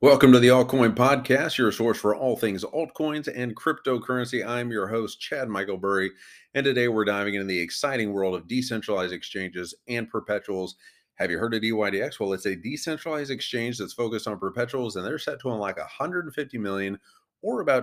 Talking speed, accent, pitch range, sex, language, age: 185 wpm, American, 95-125 Hz, male, English, 30-49